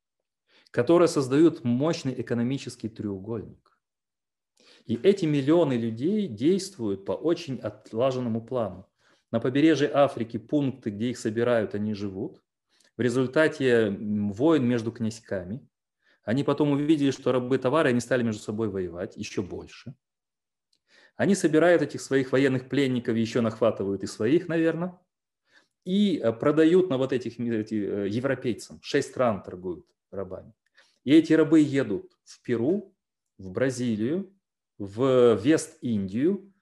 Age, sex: 30-49, male